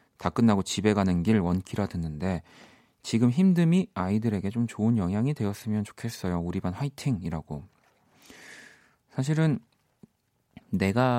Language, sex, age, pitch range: Korean, male, 30-49, 90-130 Hz